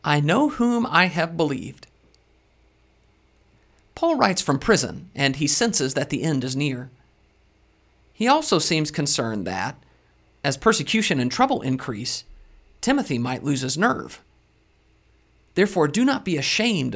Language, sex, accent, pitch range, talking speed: English, male, American, 130-195 Hz, 135 wpm